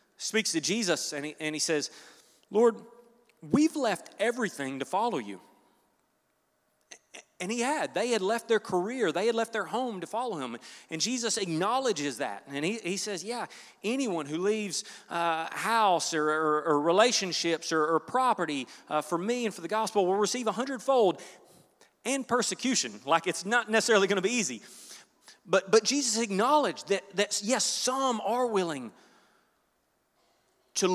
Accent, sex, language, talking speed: American, male, English, 165 wpm